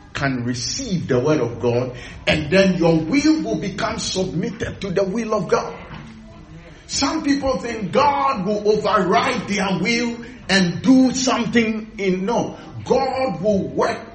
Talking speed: 145 wpm